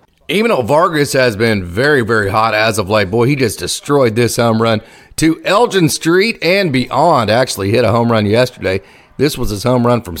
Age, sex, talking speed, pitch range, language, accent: 40-59, male, 210 wpm, 110-140 Hz, English, American